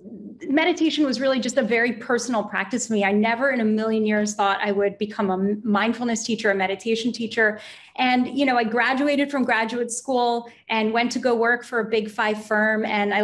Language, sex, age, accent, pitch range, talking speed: English, female, 30-49, American, 210-245 Hz, 210 wpm